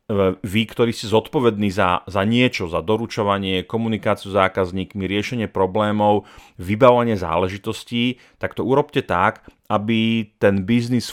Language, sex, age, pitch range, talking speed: Slovak, male, 40-59, 100-120 Hz, 125 wpm